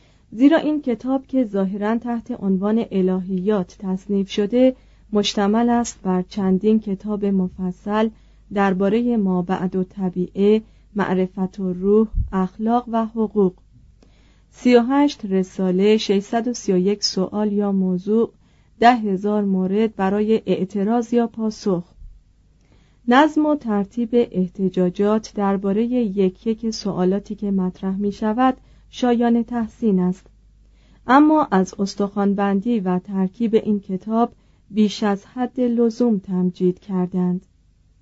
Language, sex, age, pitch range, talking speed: Persian, female, 40-59, 190-225 Hz, 105 wpm